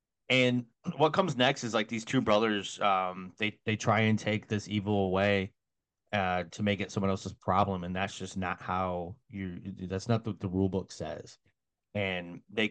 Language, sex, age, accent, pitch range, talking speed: English, male, 30-49, American, 95-110 Hz, 190 wpm